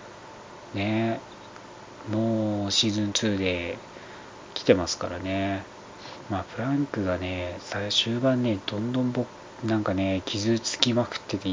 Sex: male